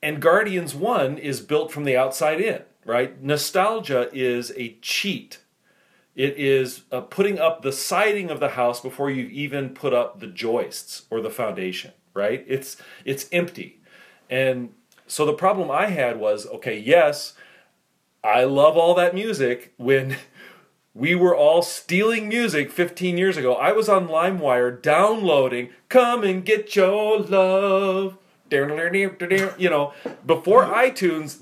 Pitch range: 135-190 Hz